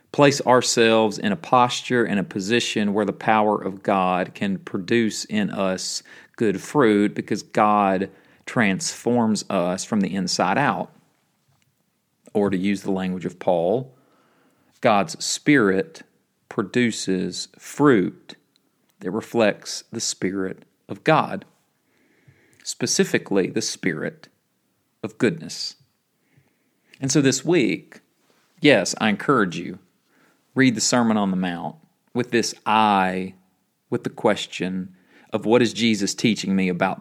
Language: English